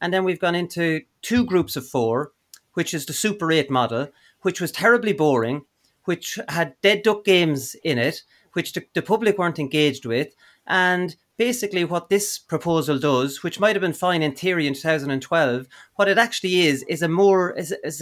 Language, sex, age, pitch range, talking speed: English, male, 40-59, 155-215 Hz, 190 wpm